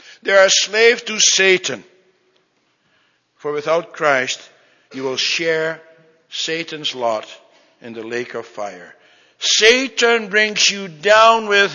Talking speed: 125 wpm